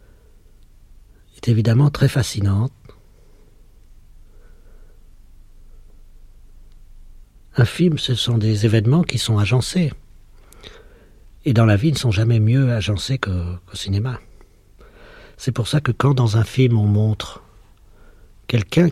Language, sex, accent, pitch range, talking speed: French, male, French, 100-120 Hz, 115 wpm